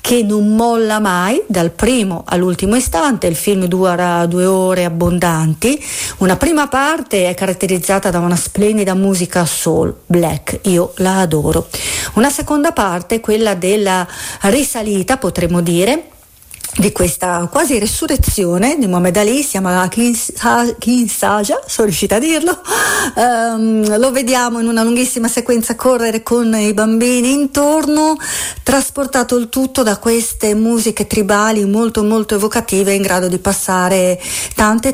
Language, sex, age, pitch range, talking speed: Italian, female, 40-59, 180-235 Hz, 135 wpm